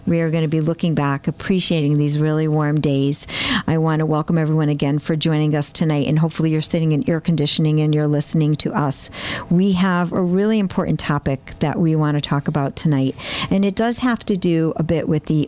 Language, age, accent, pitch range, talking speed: English, 50-69, American, 150-175 Hz, 220 wpm